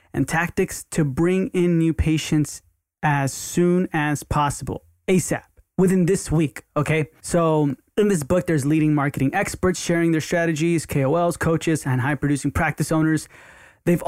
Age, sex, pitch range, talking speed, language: 20-39, male, 135-165 Hz, 145 wpm, English